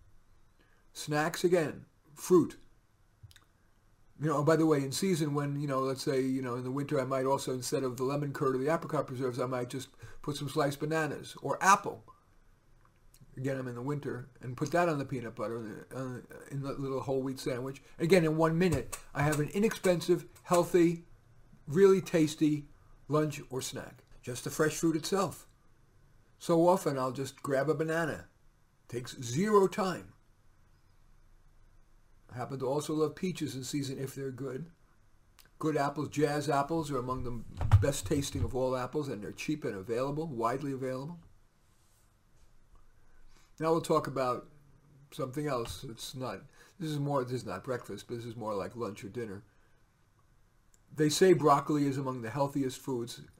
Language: English